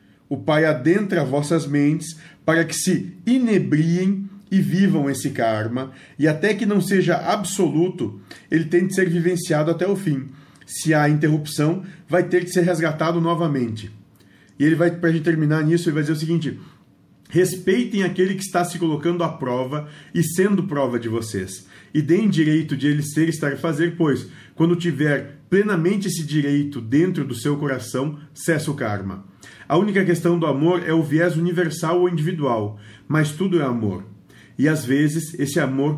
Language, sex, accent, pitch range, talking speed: Portuguese, male, Brazilian, 140-180 Hz, 175 wpm